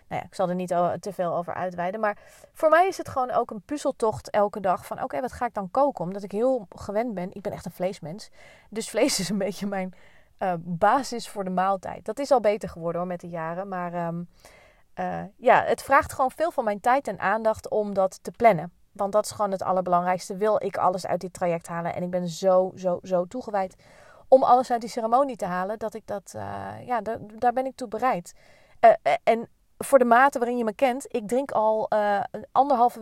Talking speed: 235 wpm